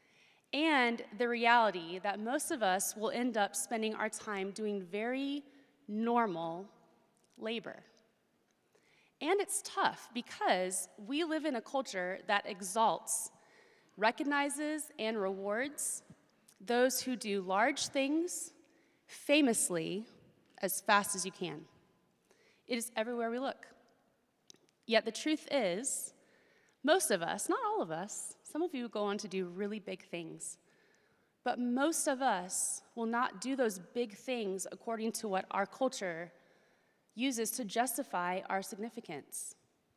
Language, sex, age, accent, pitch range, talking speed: English, female, 30-49, American, 195-265 Hz, 130 wpm